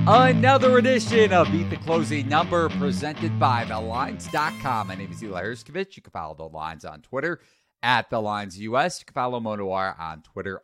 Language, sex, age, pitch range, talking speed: English, male, 40-59, 95-130 Hz, 170 wpm